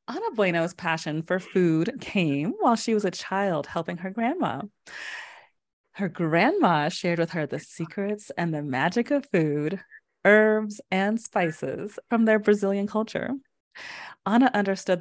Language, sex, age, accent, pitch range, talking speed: English, female, 30-49, American, 170-235 Hz, 140 wpm